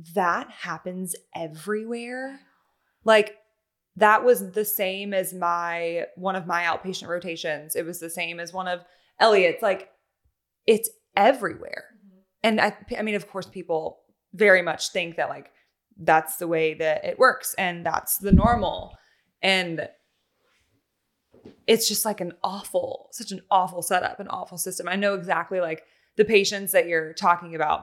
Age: 20-39